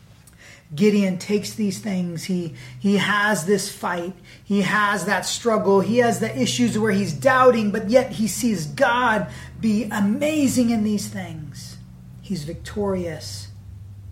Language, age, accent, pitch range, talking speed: English, 30-49, American, 155-210 Hz, 135 wpm